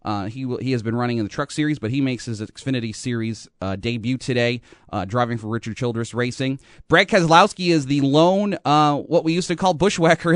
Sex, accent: male, American